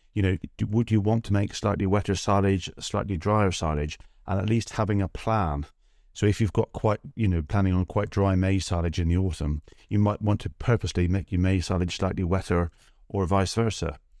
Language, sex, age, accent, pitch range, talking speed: English, male, 40-59, British, 85-105 Hz, 205 wpm